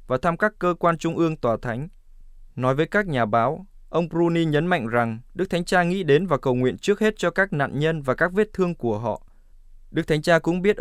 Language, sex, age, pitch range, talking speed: Vietnamese, male, 20-39, 125-175 Hz, 245 wpm